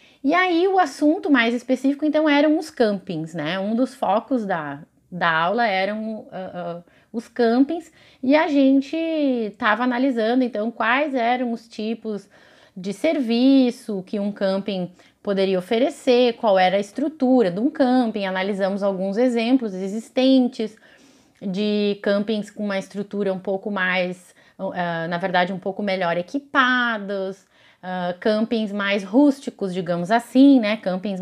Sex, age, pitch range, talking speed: female, 20-39, 190-255 Hz, 140 wpm